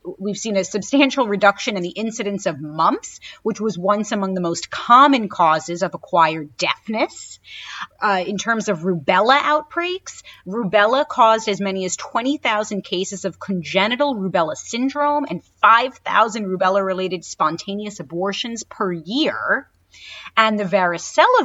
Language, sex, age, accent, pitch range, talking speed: English, female, 30-49, American, 180-240 Hz, 135 wpm